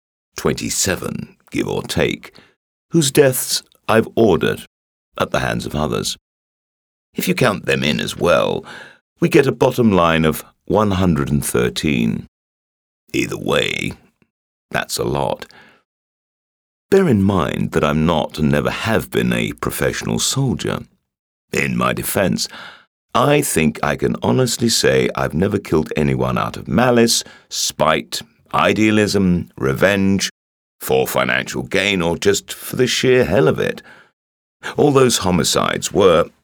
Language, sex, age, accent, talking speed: English, male, 50-69, British, 135 wpm